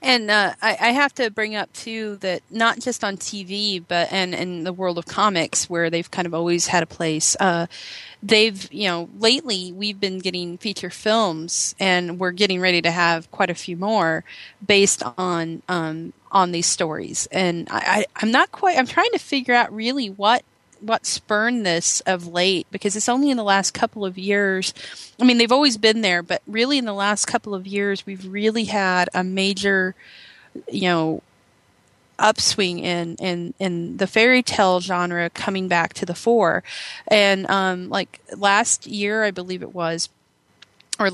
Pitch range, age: 175-215 Hz, 30-49